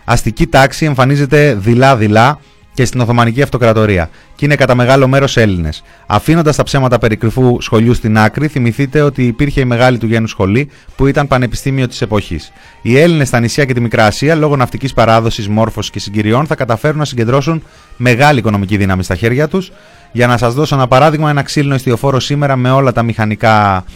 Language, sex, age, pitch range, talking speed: Greek, male, 30-49, 105-135 Hz, 180 wpm